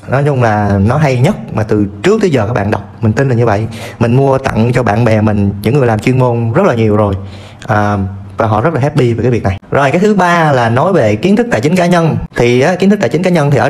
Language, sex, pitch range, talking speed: Vietnamese, male, 115-170 Hz, 300 wpm